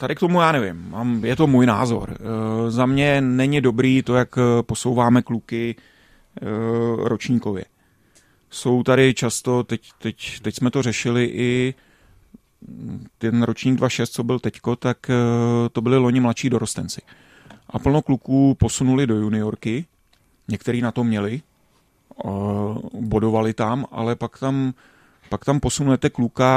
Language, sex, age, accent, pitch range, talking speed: Czech, male, 30-49, native, 110-130 Hz, 145 wpm